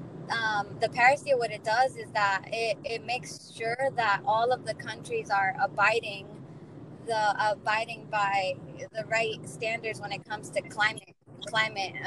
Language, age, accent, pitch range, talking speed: English, 20-39, American, 170-230 Hz, 155 wpm